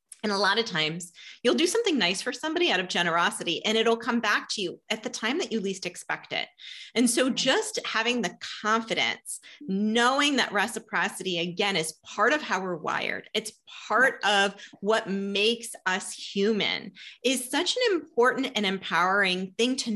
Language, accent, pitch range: English, American, 195-255 Hz